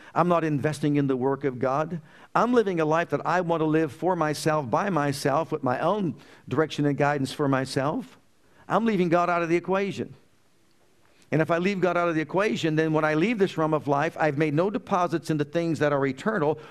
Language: English